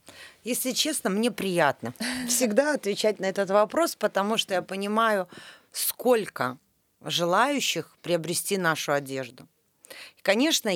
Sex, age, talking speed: female, 30-49, 105 wpm